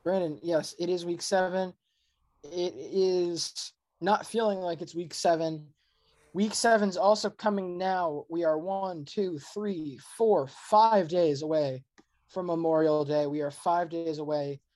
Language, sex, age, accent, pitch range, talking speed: English, male, 20-39, American, 155-185 Hz, 150 wpm